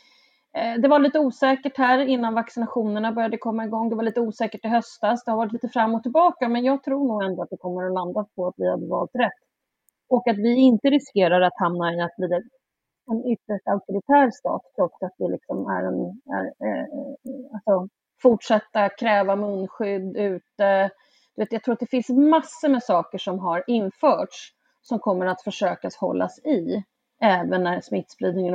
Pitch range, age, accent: 195-265 Hz, 30-49, native